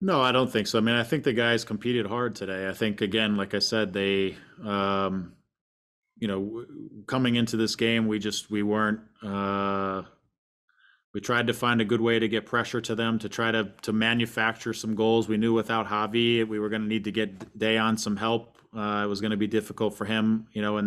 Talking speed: 230 wpm